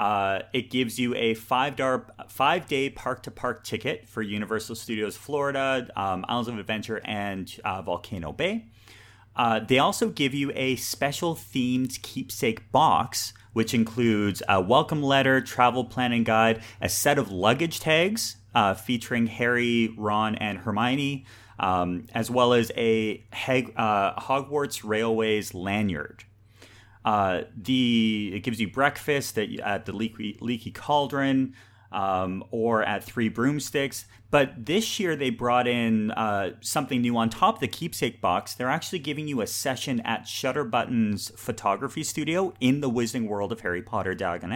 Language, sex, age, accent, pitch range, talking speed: English, male, 30-49, American, 105-130 Hz, 145 wpm